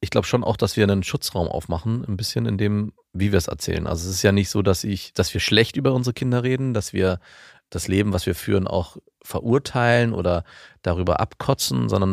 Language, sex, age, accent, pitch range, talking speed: German, male, 30-49, German, 95-115 Hz, 225 wpm